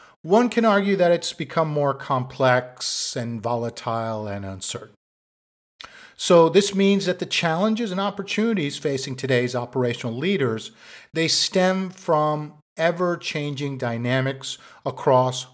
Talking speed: 115 wpm